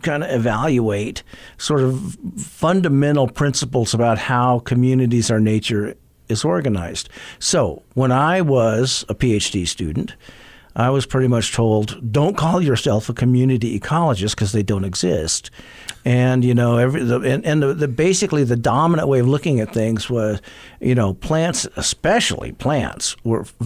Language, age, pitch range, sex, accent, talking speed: English, 50-69, 115-155 Hz, male, American, 150 wpm